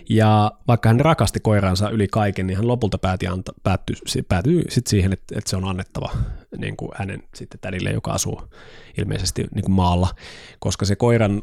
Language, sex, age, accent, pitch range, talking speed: Finnish, male, 20-39, native, 95-115 Hz, 180 wpm